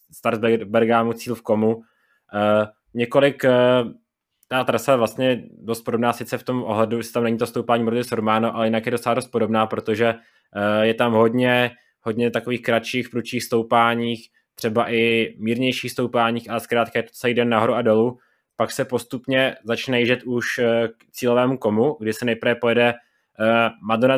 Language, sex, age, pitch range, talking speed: Czech, male, 20-39, 110-120 Hz, 165 wpm